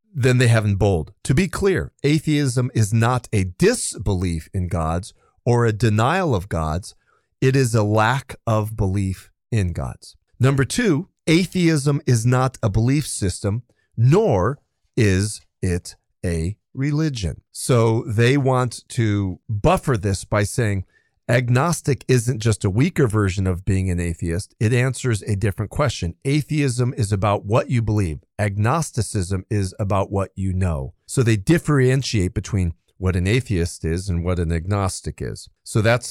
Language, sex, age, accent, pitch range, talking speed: English, male, 40-59, American, 95-130 Hz, 150 wpm